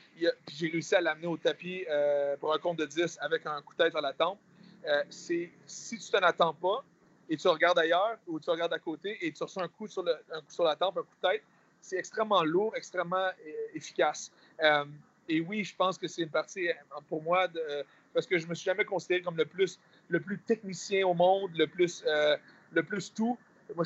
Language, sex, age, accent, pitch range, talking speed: French, male, 40-59, Canadian, 155-185 Hz, 225 wpm